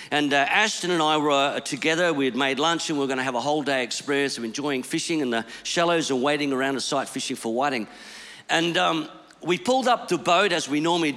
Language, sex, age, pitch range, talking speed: English, male, 50-69, 140-195 Hz, 240 wpm